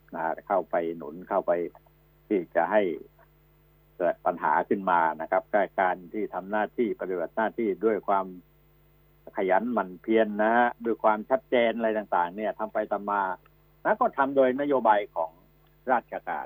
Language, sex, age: Thai, male, 60-79